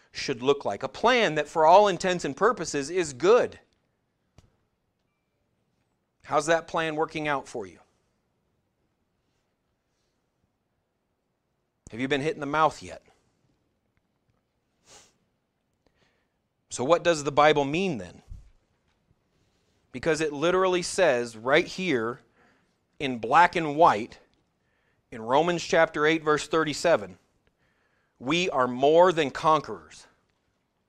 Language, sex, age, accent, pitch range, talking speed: English, male, 40-59, American, 130-170 Hz, 110 wpm